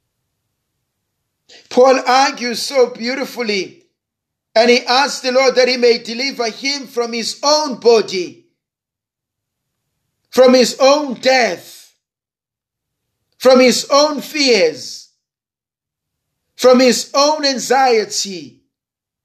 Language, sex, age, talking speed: English, male, 50-69, 95 wpm